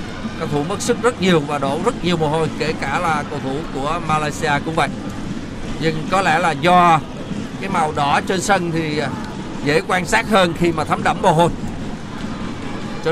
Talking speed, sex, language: 195 wpm, male, Vietnamese